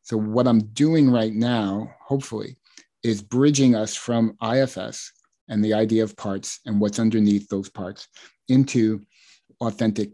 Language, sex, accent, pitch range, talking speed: English, male, American, 105-125 Hz, 140 wpm